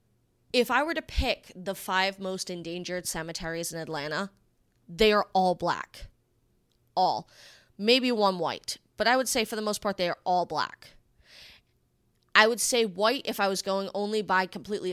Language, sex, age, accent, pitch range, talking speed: English, female, 20-39, American, 175-225 Hz, 175 wpm